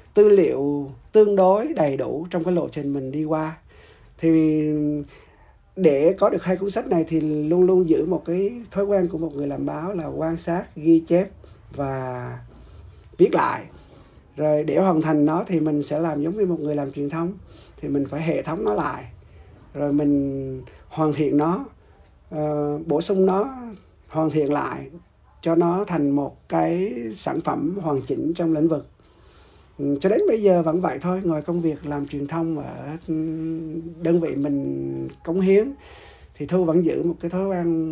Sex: male